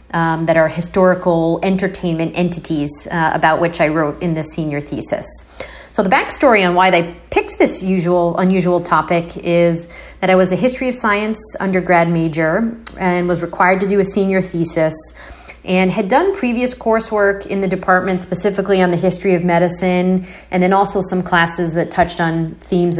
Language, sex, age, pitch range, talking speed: English, female, 30-49, 170-195 Hz, 175 wpm